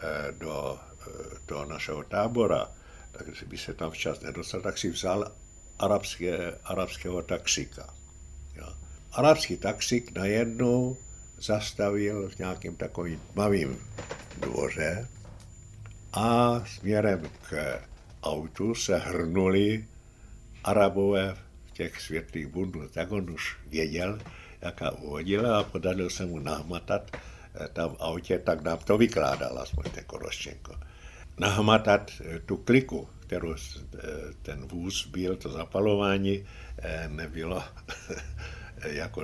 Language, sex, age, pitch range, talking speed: Czech, male, 60-79, 80-105 Hz, 100 wpm